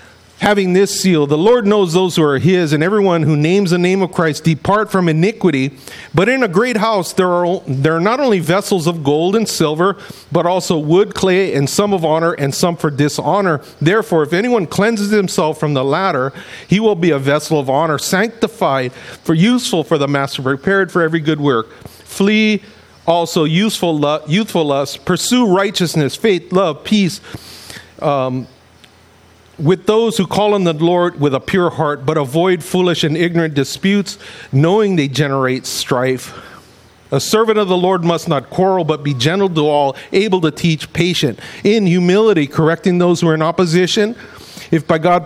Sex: male